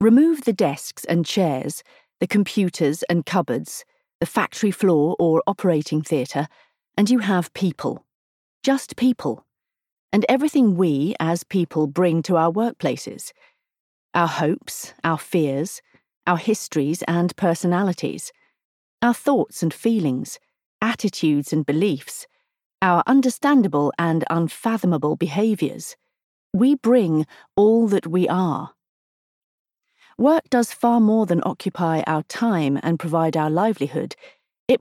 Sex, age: female, 40-59